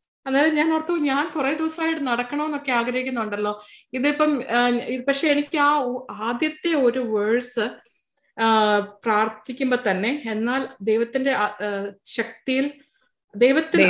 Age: 20-39